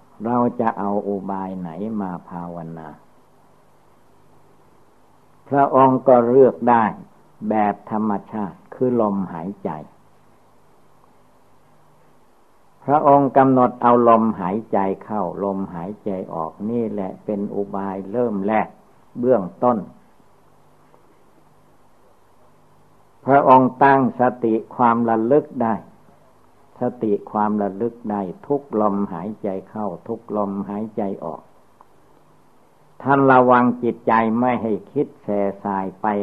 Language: Thai